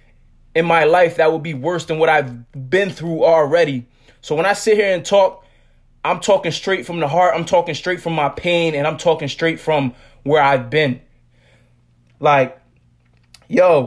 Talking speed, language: 180 wpm, English